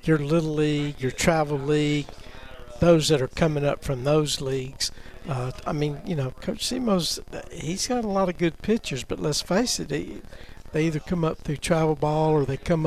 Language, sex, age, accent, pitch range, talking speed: English, male, 60-79, American, 135-165 Hz, 200 wpm